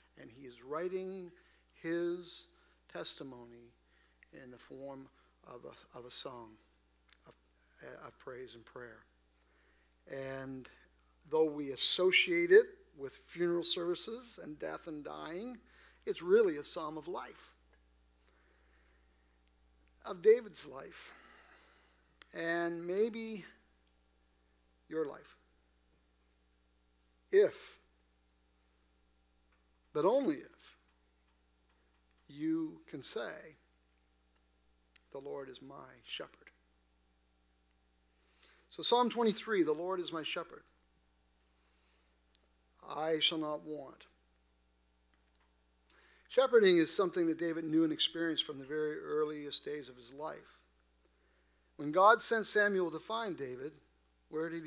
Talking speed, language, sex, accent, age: 100 wpm, English, male, American, 50-69